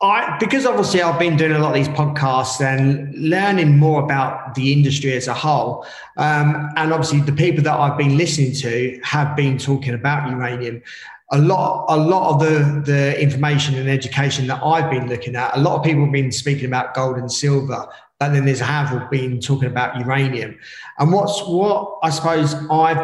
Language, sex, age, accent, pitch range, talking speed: English, male, 30-49, British, 130-150 Hz, 195 wpm